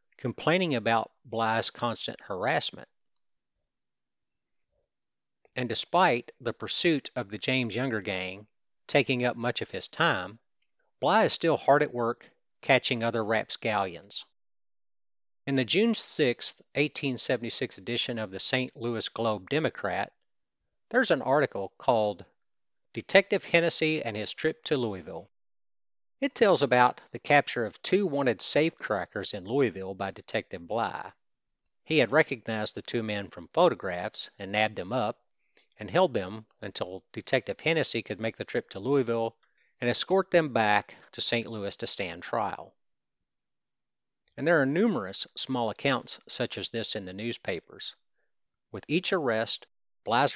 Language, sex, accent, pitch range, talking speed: English, male, American, 110-140 Hz, 140 wpm